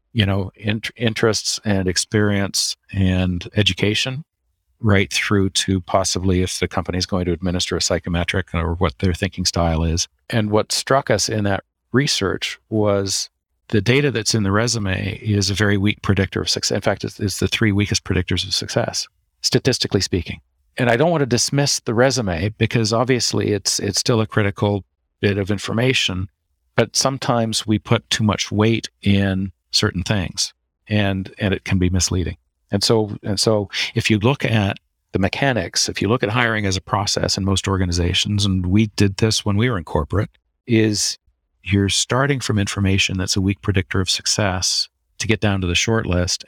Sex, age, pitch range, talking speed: male, 50-69, 95-110 Hz, 180 wpm